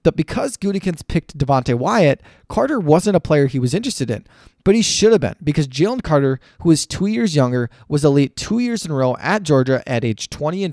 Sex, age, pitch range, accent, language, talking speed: male, 20-39, 125-155 Hz, American, English, 225 wpm